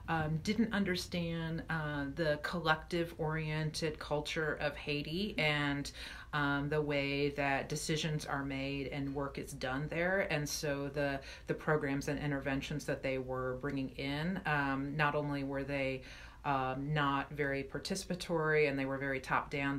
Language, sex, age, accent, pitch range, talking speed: English, female, 40-59, American, 140-160 Hz, 145 wpm